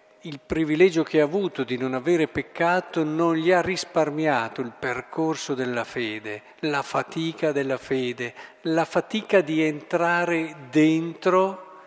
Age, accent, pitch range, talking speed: 50-69, native, 140-180 Hz, 130 wpm